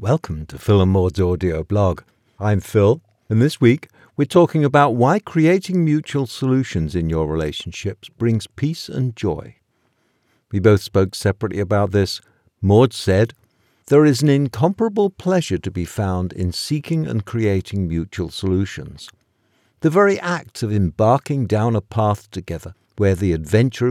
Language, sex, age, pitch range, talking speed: English, male, 60-79, 95-130 Hz, 150 wpm